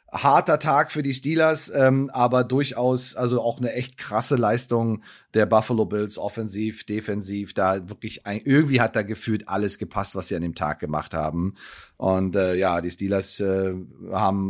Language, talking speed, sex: German, 175 wpm, male